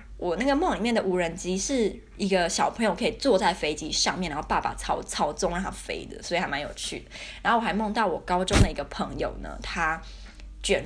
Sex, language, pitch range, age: female, Chinese, 180-225 Hz, 20-39